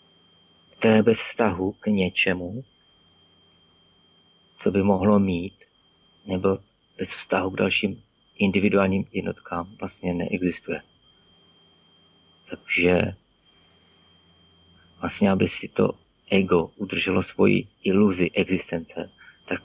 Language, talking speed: Czech, 90 wpm